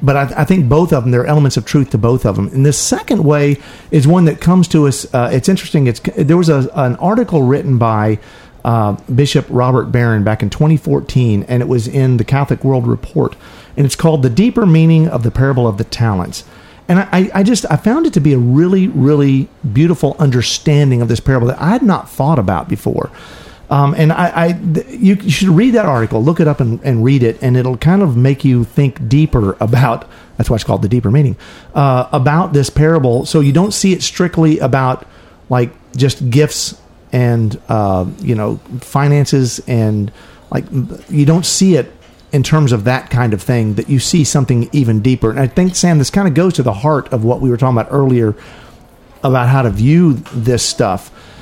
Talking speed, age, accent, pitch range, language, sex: 215 wpm, 40-59, American, 120-155 Hz, English, male